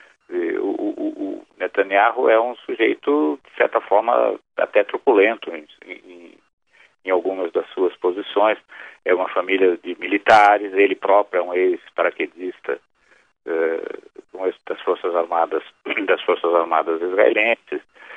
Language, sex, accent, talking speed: Portuguese, male, Brazilian, 110 wpm